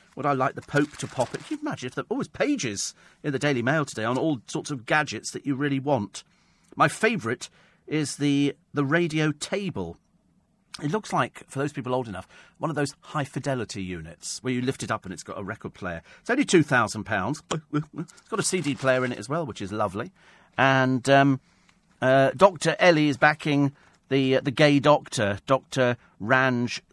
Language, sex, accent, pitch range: English, male, British, 120-160 Hz